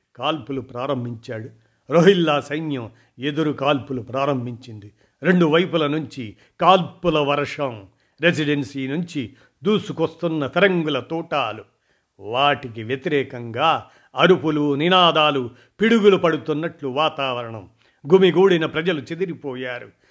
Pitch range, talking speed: 125-160 Hz, 80 wpm